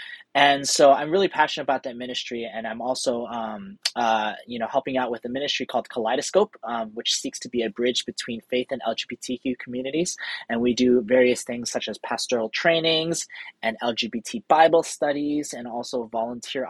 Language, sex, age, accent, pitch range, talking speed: English, male, 30-49, American, 120-145 Hz, 180 wpm